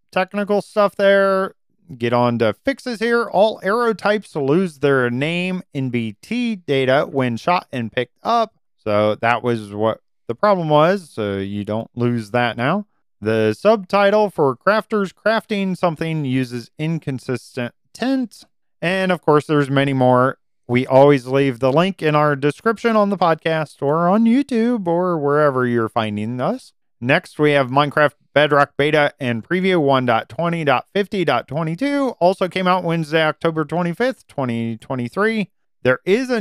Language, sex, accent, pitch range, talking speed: English, male, American, 130-195 Hz, 145 wpm